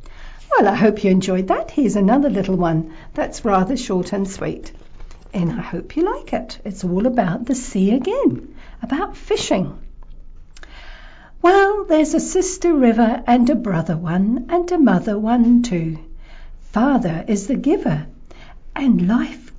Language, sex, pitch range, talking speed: English, female, 185-285 Hz, 150 wpm